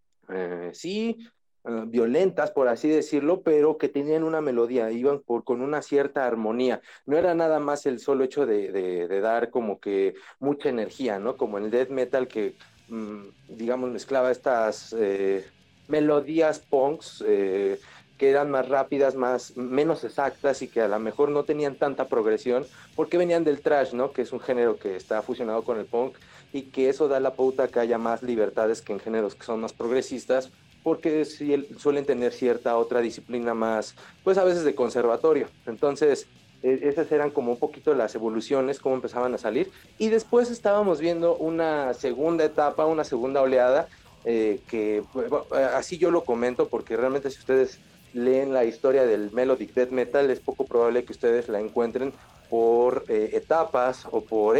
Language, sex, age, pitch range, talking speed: Spanish, male, 40-59, 120-160 Hz, 170 wpm